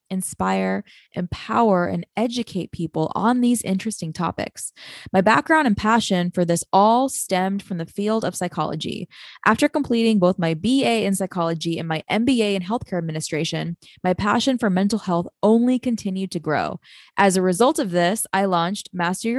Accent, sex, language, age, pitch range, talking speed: American, female, English, 20-39, 185-255 Hz, 160 wpm